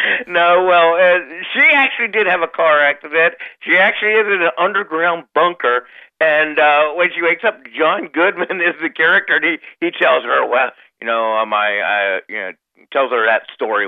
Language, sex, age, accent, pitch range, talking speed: English, male, 60-79, American, 140-185 Hz, 195 wpm